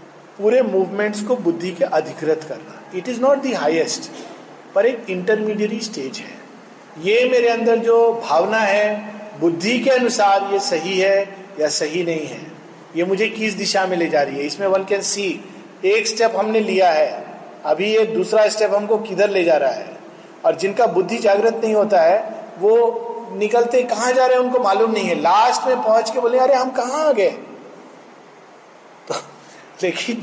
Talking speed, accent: 175 wpm, native